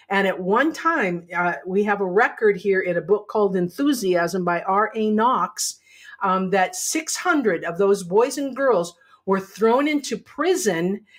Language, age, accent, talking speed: English, 50-69, American, 160 wpm